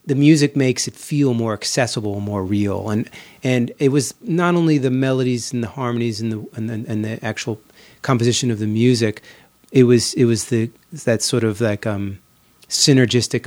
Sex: male